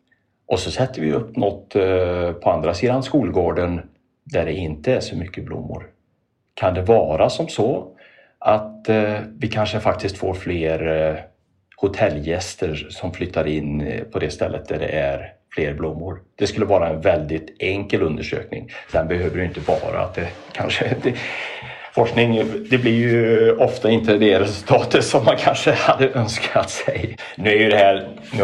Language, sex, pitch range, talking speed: Swedish, male, 80-105 Hz, 160 wpm